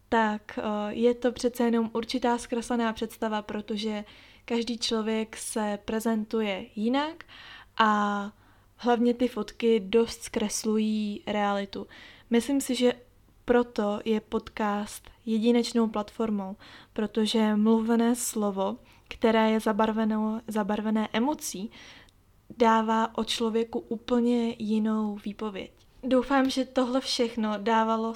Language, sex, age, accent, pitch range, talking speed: Czech, female, 20-39, native, 215-235 Hz, 100 wpm